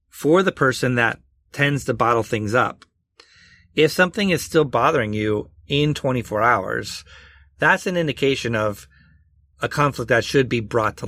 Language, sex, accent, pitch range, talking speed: English, male, American, 105-140 Hz, 155 wpm